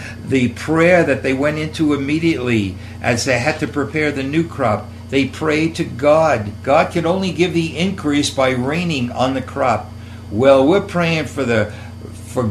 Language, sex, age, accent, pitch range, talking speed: English, male, 60-79, American, 105-155 Hz, 170 wpm